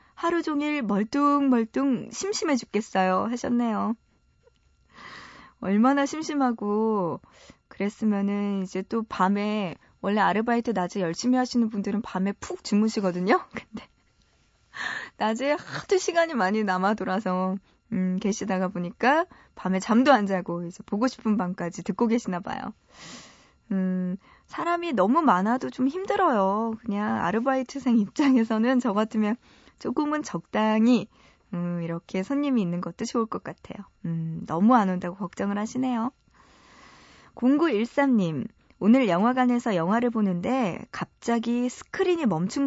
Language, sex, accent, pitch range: Korean, female, native, 195-255 Hz